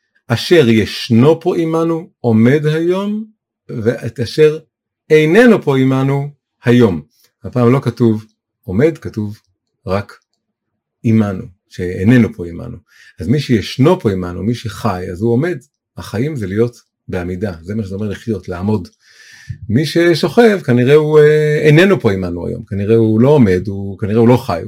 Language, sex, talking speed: Hebrew, male, 145 wpm